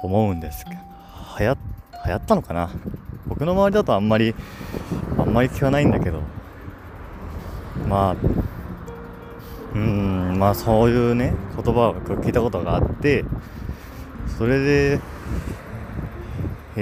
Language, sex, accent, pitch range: Japanese, male, native, 90-120 Hz